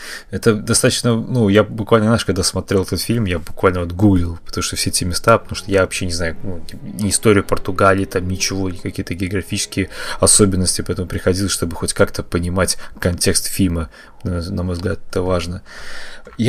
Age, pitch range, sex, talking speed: 20-39, 85-110 Hz, male, 175 wpm